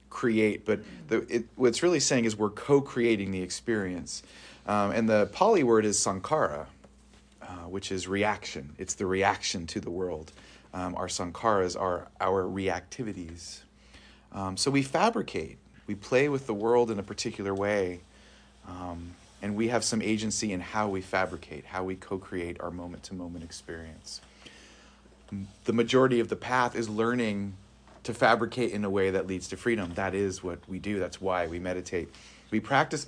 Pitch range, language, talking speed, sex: 95-125 Hz, English, 165 wpm, male